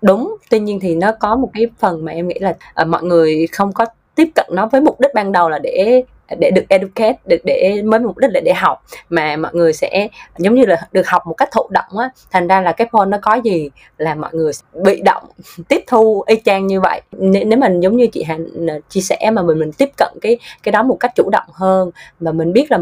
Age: 20-39